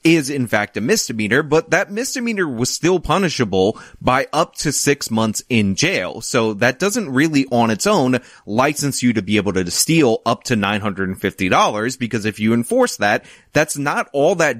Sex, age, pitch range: male, 30-49, 105-145 Hz